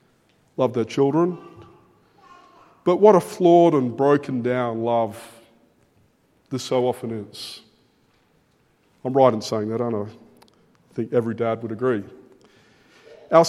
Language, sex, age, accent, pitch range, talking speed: English, male, 50-69, Australian, 120-155 Hz, 130 wpm